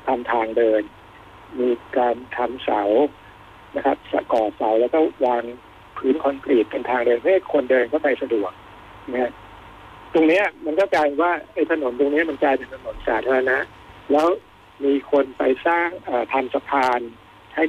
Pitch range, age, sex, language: 125-160 Hz, 60-79, male, Thai